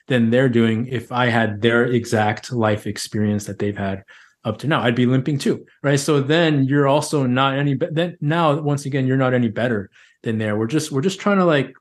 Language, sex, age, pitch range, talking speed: English, male, 20-39, 110-135 Hz, 230 wpm